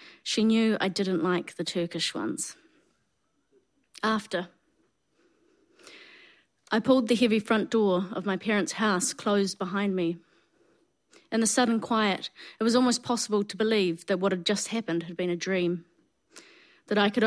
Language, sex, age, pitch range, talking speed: English, female, 30-49, 180-225 Hz, 155 wpm